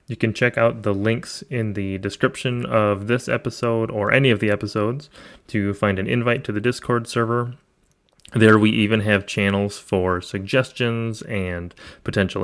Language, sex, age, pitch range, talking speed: English, male, 20-39, 100-120 Hz, 165 wpm